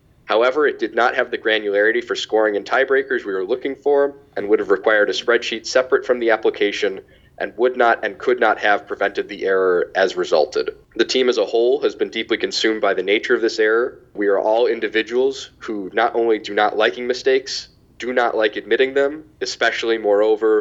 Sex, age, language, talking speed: male, 20-39, English, 205 wpm